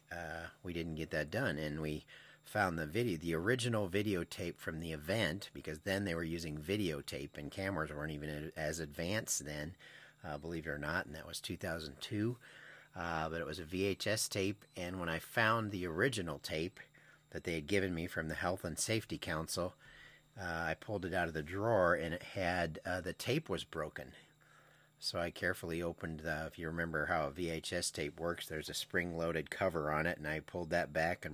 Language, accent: English, American